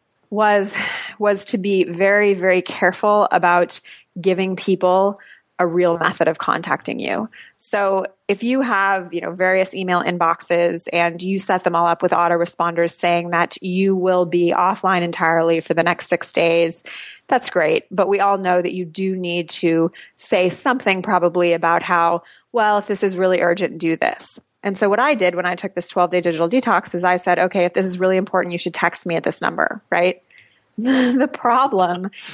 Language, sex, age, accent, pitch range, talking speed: English, female, 20-39, American, 170-195 Hz, 185 wpm